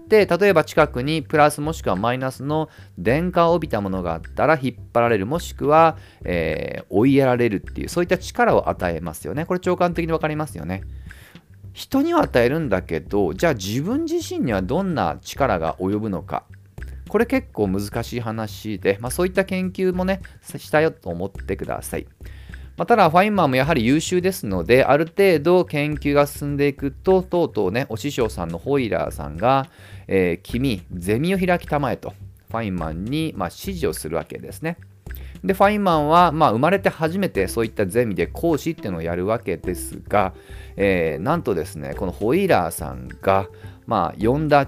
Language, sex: Japanese, male